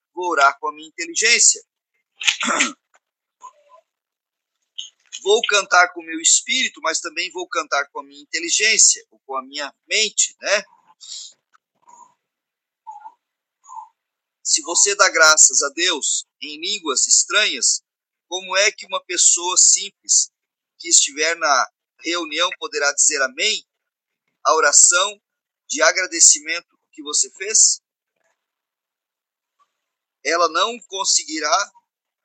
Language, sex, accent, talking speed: Portuguese, male, Brazilian, 110 wpm